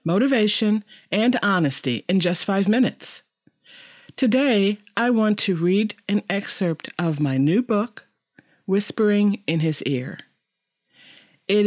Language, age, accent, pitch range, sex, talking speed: English, 40-59, American, 155-210 Hz, female, 120 wpm